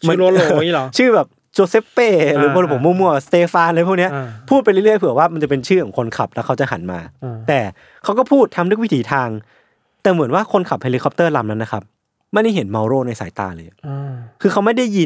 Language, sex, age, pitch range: Thai, male, 20-39, 120-170 Hz